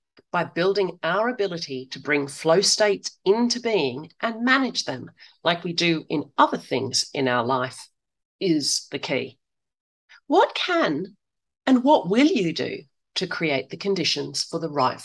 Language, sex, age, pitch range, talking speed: English, female, 40-59, 150-245 Hz, 155 wpm